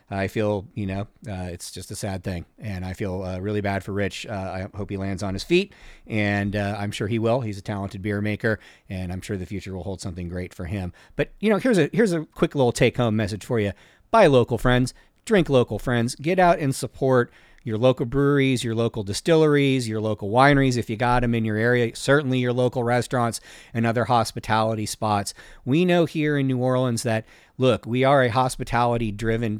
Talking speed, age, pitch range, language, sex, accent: 220 wpm, 40-59, 105-130 Hz, English, male, American